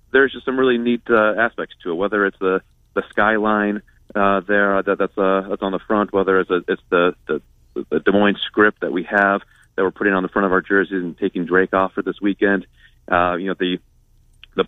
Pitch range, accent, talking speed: 90-105 Hz, American, 235 wpm